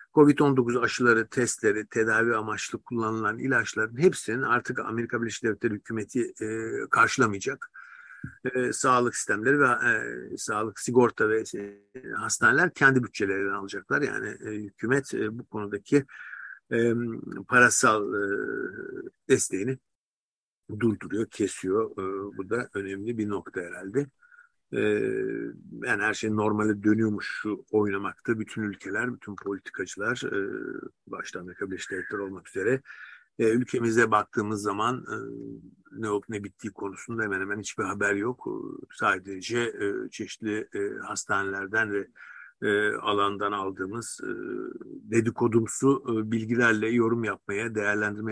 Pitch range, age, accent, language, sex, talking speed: 105-135 Hz, 50-69, native, Turkish, male, 105 wpm